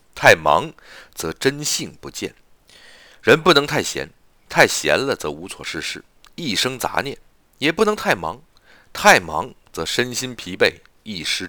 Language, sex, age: Chinese, male, 50-69